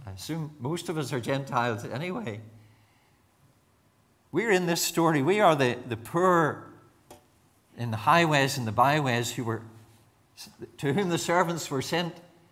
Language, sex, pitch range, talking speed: English, male, 115-160 Hz, 150 wpm